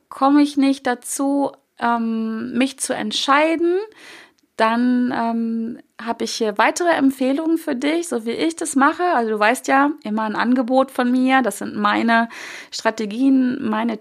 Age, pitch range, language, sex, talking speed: 30-49, 205-265 Hz, German, female, 145 wpm